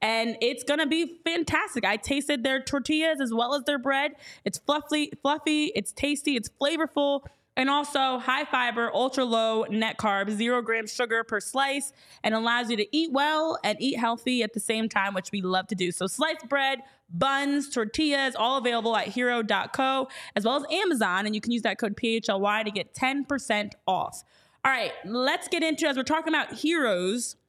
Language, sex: English, female